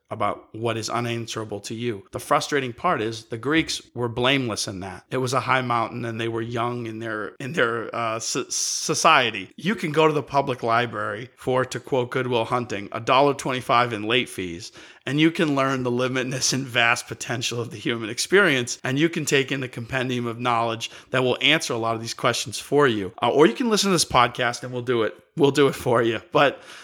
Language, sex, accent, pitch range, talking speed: English, male, American, 115-155 Hz, 220 wpm